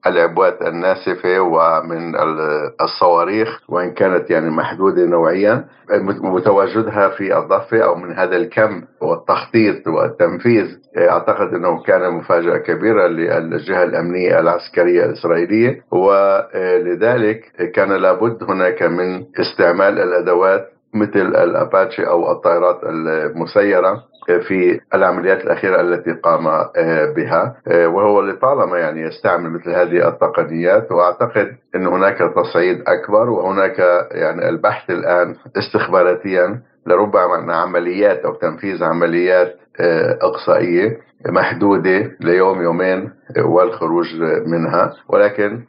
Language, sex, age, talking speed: Arabic, male, 60-79, 100 wpm